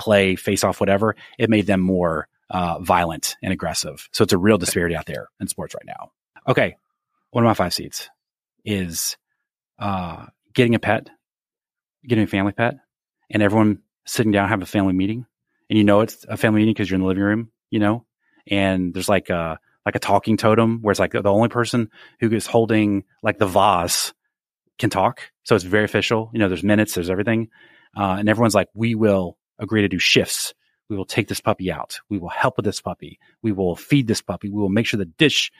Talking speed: 210 wpm